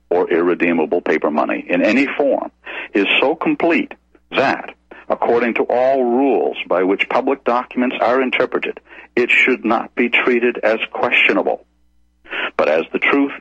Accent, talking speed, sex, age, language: American, 145 wpm, male, 60-79, English